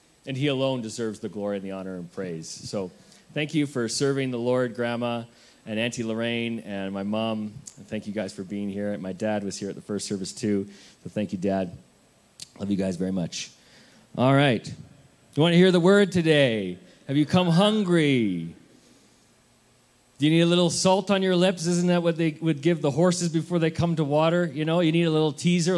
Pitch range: 115-170 Hz